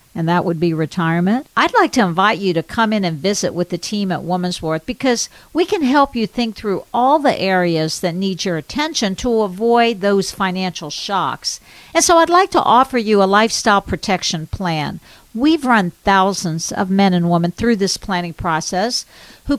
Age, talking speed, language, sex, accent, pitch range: 50-69, 195 wpm, English, female, American, 185-265 Hz